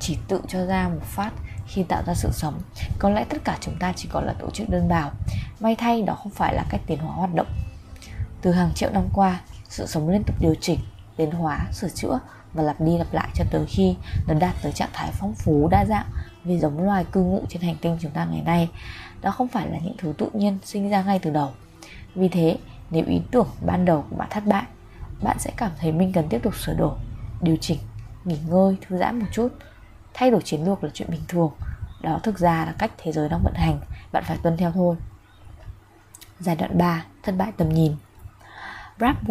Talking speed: 230 wpm